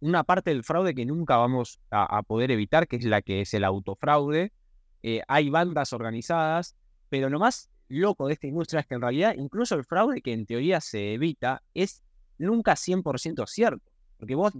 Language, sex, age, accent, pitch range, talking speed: Spanish, male, 20-39, Argentinian, 115-160 Hz, 195 wpm